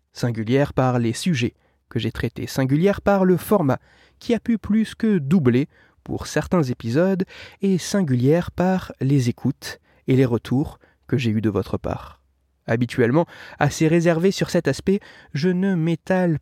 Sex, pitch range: male, 125-185 Hz